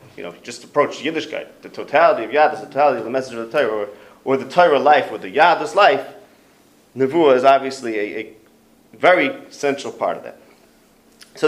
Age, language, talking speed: 30-49, English, 215 wpm